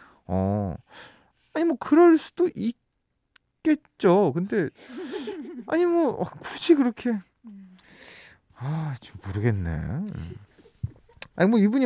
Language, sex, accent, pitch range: Korean, male, native, 120-185 Hz